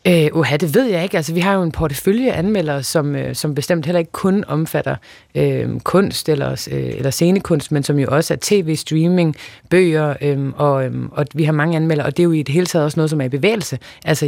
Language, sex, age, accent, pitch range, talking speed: Danish, female, 30-49, native, 140-165 Hz, 230 wpm